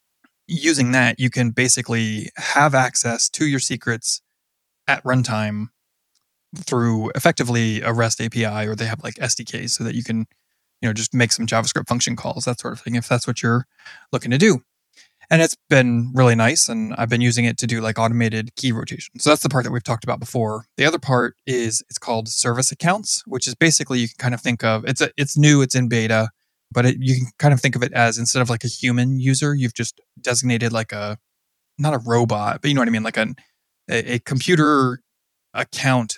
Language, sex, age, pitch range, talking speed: English, male, 20-39, 115-130 Hz, 210 wpm